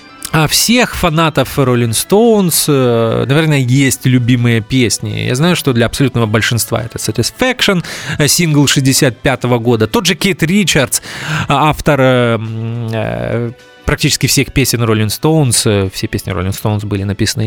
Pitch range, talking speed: 115-155 Hz, 120 wpm